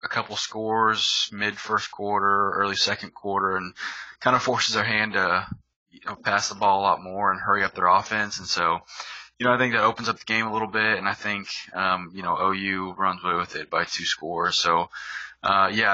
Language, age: English, 20-39